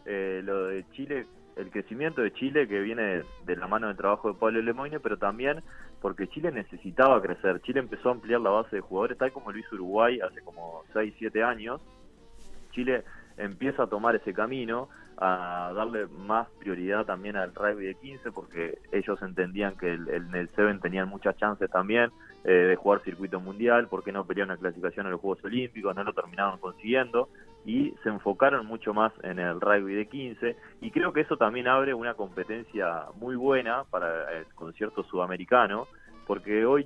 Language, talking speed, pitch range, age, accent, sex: Spanish, 185 wpm, 95-120 Hz, 20-39, Argentinian, male